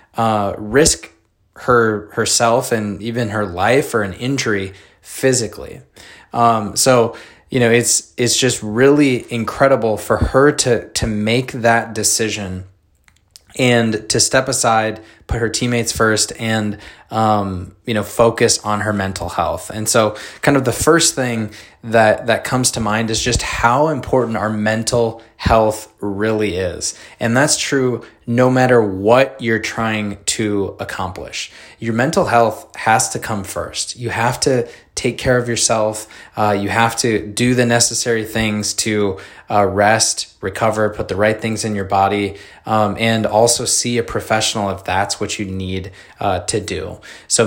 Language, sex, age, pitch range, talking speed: English, male, 20-39, 105-120 Hz, 155 wpm